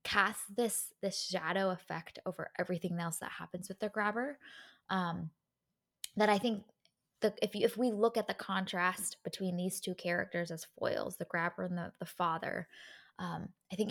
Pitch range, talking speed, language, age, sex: 175-210 Hz, 175 wpm, English, 10-29, female